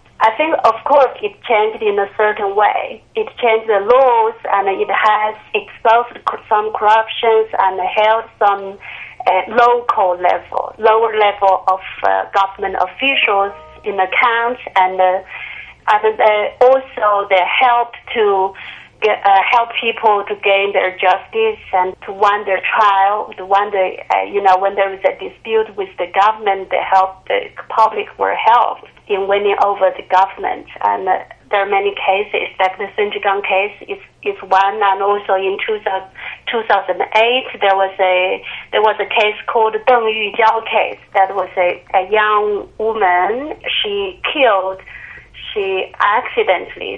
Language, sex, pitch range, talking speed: English, female, 195-240 Hz, 155 wpm